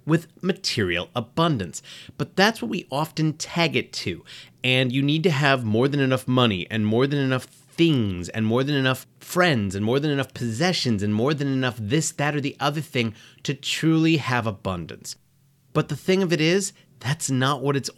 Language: English